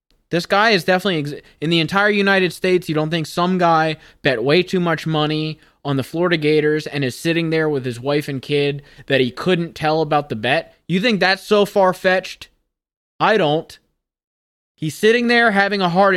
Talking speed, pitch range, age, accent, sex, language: 195 wpm, 140-180 Hz, 20-39, American, male, English